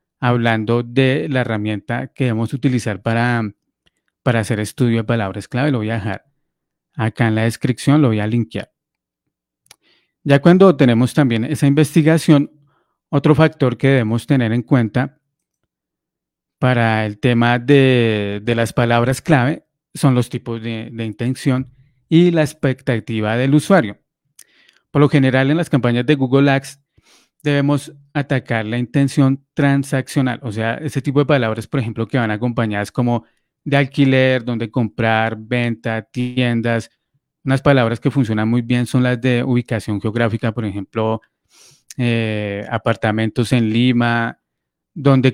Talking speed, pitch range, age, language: 145 wpm, 115-140 Hz, 30-49, English